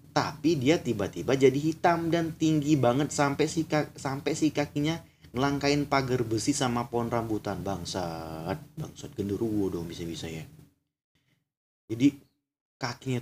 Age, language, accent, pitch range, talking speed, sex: 30-49, Indonesian, native, 110-160 Hz, 125 wpm, male